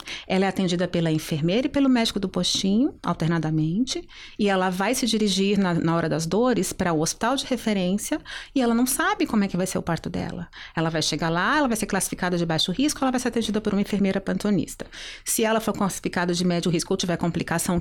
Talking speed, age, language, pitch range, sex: 230 wpm, 30-49, Portuguese, 185-255 Hz, female